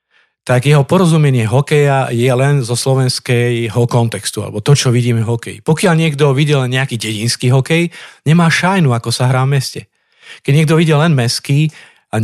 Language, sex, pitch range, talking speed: Slovak, male, 125-155 Hz, 165 wpm